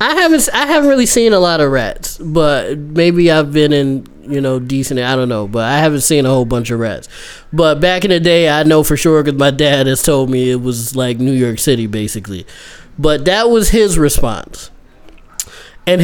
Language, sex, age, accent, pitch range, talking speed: English, male, 20-39, American, 135-175 Hz, 215 wpm